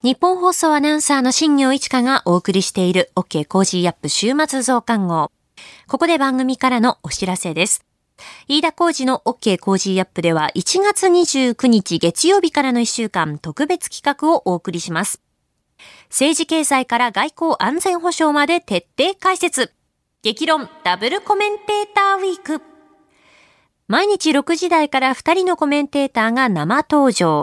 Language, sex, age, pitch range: Japanese, female, 20-39, 195-310 Hz